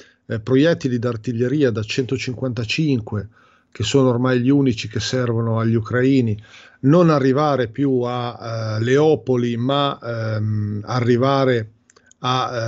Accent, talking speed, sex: native, 115 wpm, male